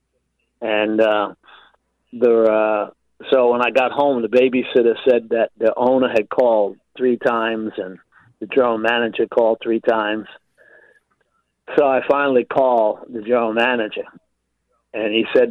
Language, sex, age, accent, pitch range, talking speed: English, male, 50-69, American, 110-135 Hz, 140 wpm